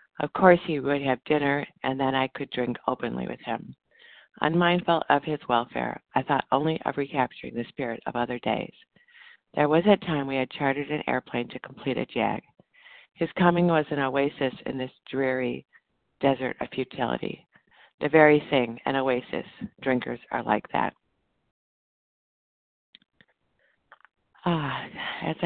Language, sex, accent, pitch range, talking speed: English, female, American, 130-155 Hz, 150 wpm